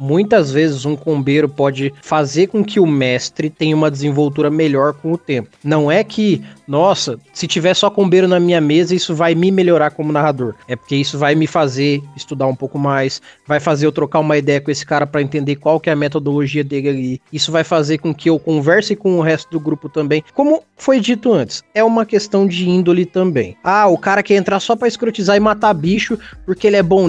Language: Portuguese